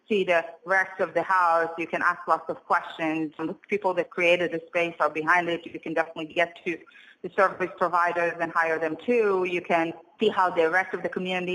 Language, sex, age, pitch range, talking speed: English, female, 30-49, 160-200 Hz, 220 wpm